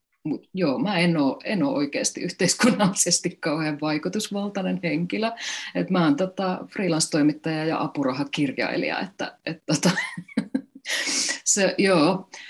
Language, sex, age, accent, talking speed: Finnish, female, 30-49, native, 110 wpm